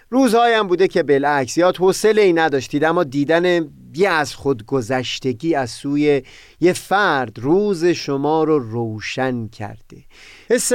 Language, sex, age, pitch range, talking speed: Persian, male, 30-49, 120-180 Hz, 125 wpm